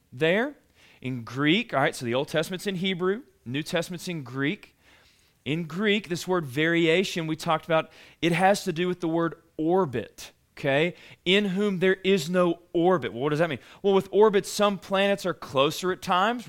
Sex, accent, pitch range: male, American, 160-200 Hz